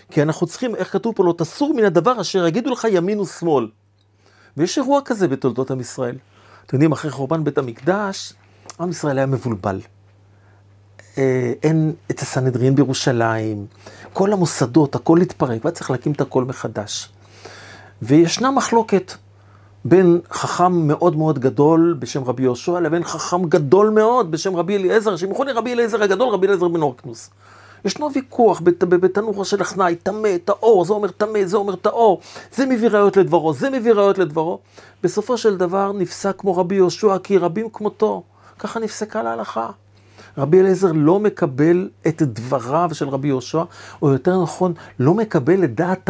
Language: Hebrew